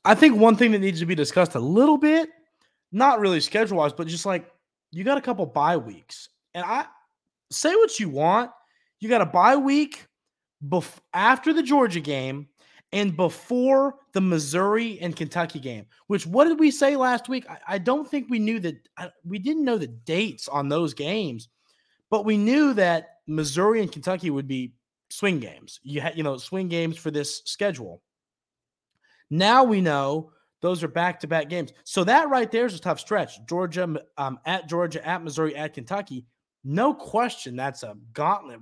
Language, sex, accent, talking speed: English, male, American, 185 wpm